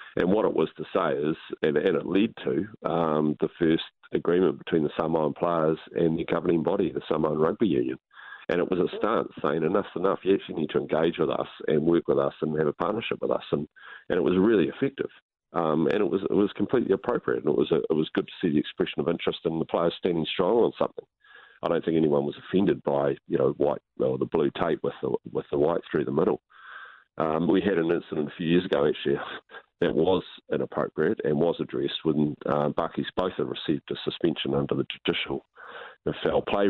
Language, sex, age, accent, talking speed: English, male, 40-59, Australian, 225 wpm